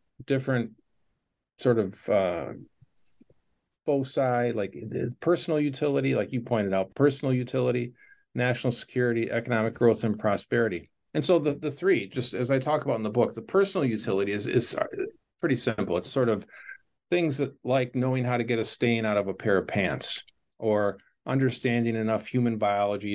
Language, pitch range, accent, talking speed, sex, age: English, 105-130 Hz, American, 165 wpm, male, 50-69